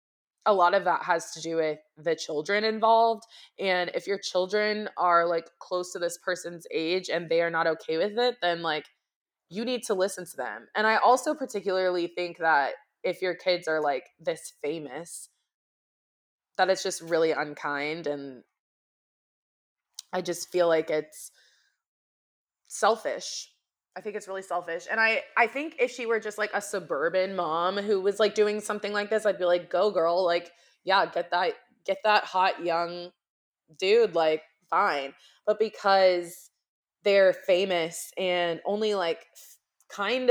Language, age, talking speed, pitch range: English, 20-39, 165 wpm, 165-210 Hz